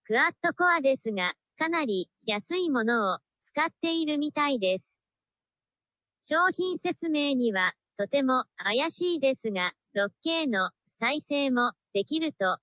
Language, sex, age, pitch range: Japanese, male, 40-59, 210-325 Hz